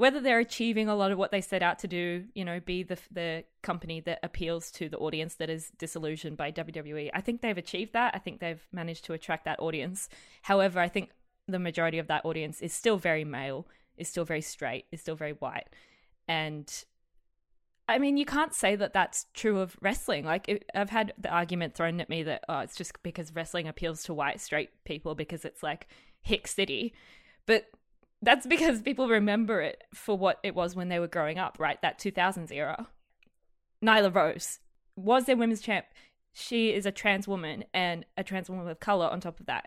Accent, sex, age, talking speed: Australian, female, 20-39, 205 wpm